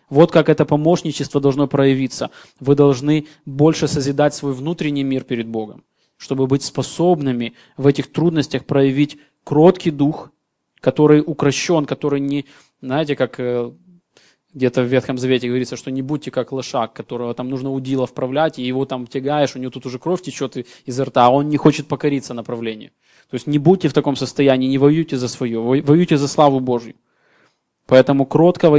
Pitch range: 130-150 Hz